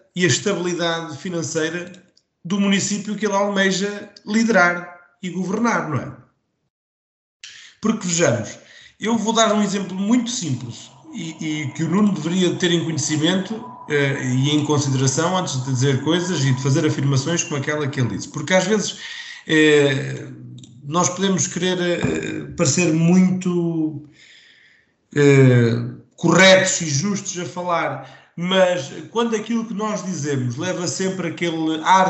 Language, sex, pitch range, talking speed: Portuguese, male, 140-190 Hz, 140 wpm